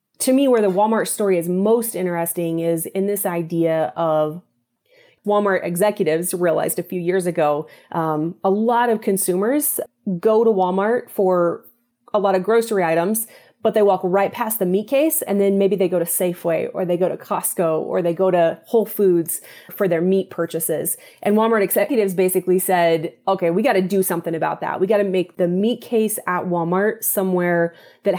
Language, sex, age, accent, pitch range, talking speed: English, female, 30-49, American, 170-215 Hz, 190 wpm